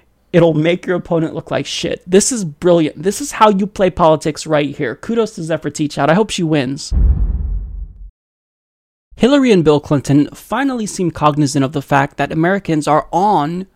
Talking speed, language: 175 wpm, English